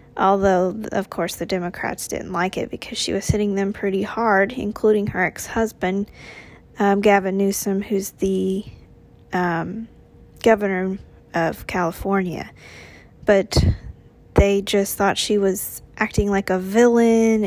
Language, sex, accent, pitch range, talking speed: English, female, American, 190-215 Hz, 125 wpm